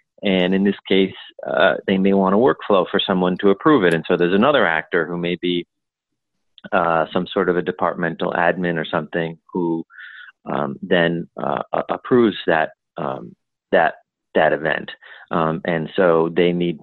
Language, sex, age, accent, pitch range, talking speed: English, male, 30-49, American, 85-95 Hz, 170 wpm